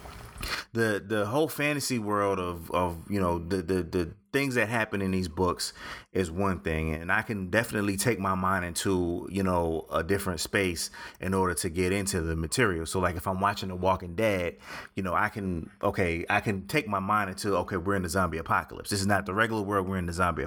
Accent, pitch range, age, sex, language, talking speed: American, 90-105 Hz, 30-49, male, English, 225 wpm